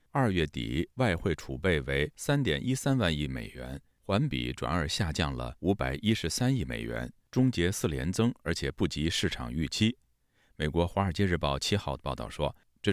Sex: male